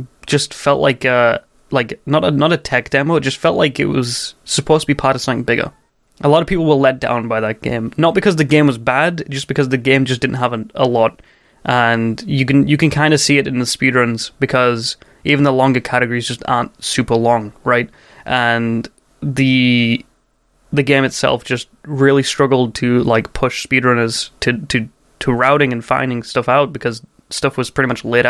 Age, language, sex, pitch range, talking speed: 20-39, English, male, 125-150 Hz, 205 wpm